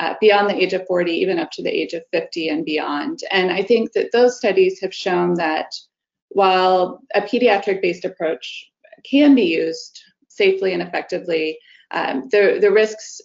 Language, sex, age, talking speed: English, female, 20-39, 170 wpm